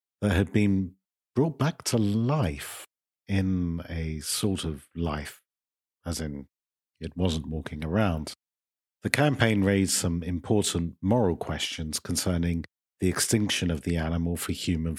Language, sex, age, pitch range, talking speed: English, male, 50-69, 85-110 Hz, 130 wpm